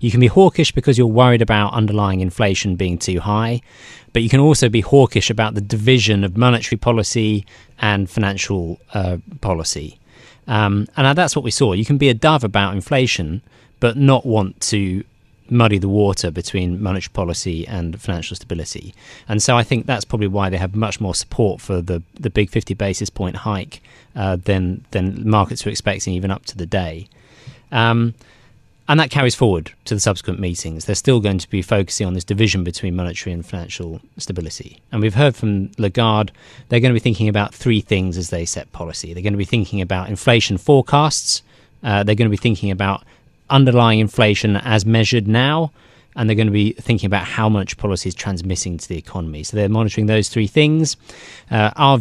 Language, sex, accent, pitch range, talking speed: English, male, British, 95-120 Hz, 195 wpm